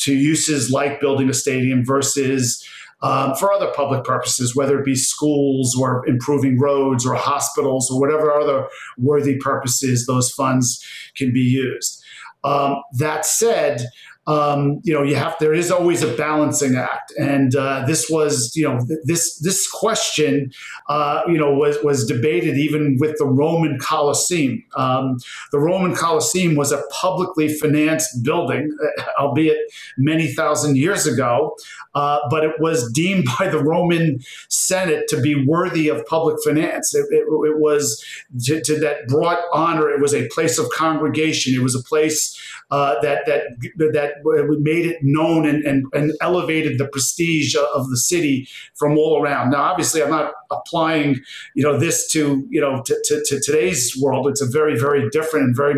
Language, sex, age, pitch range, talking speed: English, male, 40-59, 135-155 Hz, 170 wpm